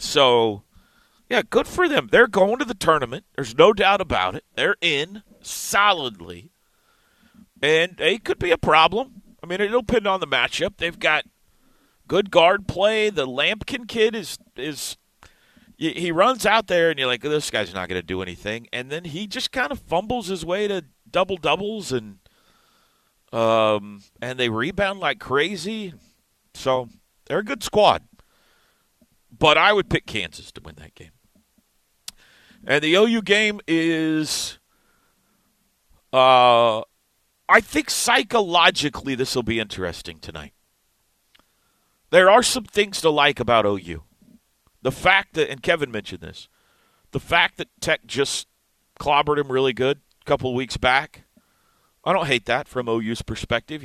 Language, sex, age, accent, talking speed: English, male, 40-59, American, 155 wpm